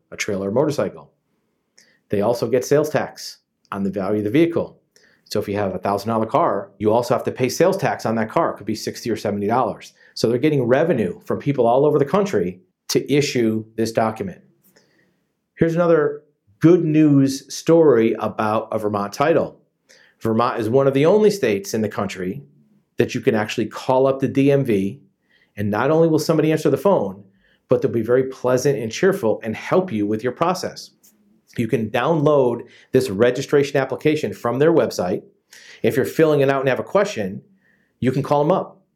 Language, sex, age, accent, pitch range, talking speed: English, male, 40-59, American, 110-155 Hz, 190 wpm